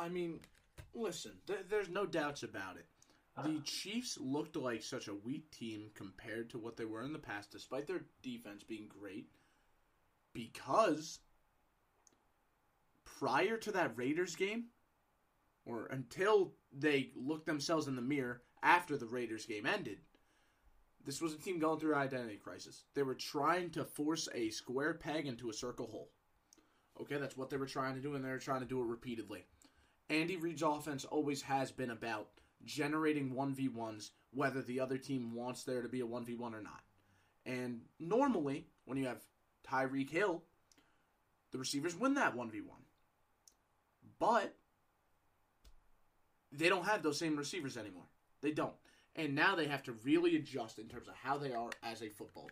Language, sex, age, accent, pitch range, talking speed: English, male, 20-39, American, 120-155 Hz, 165 wpm